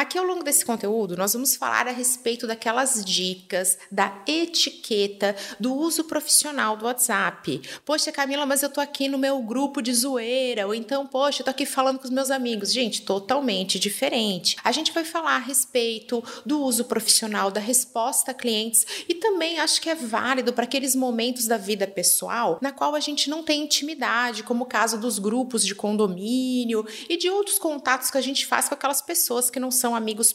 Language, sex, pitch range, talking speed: Portuguese, female, 215-275 Hz, 195 wpm